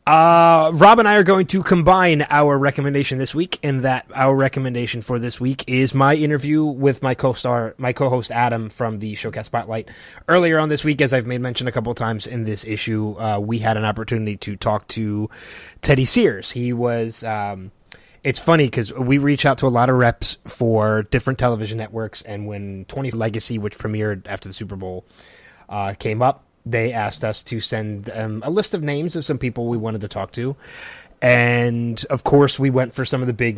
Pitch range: 110-140 Hz